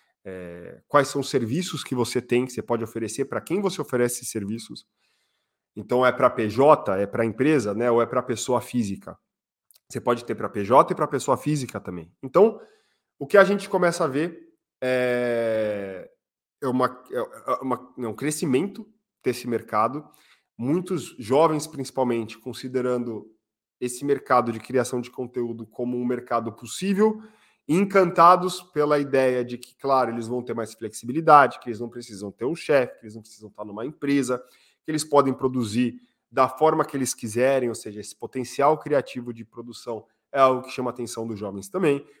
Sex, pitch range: male, 115-145 Hz